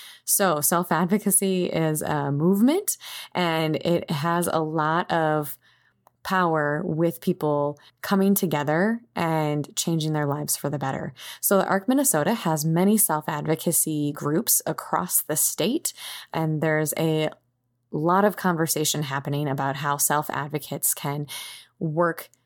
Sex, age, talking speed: female, 20-39, 125 wpm